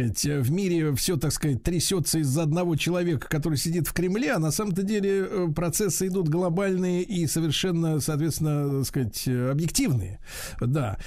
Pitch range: 135-175 Hz